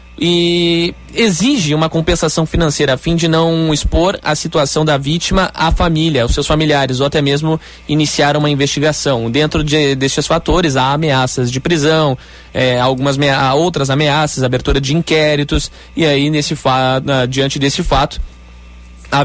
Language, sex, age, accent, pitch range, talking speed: Portuguese, male, 20-39, Brazilian, 130-170 Hz, 145 wpm